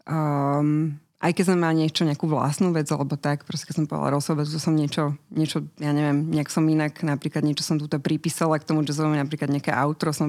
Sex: female